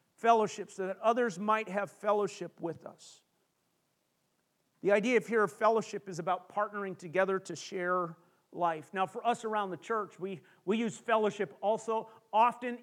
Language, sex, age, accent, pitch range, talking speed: English, male, 40-59, American, 180-225 Hz, 160 wpm